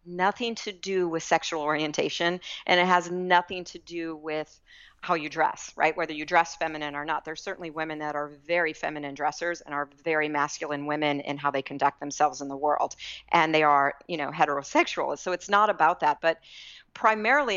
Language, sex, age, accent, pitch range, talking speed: English, female, 40-59, American, 150-180 Hz, 195 wpm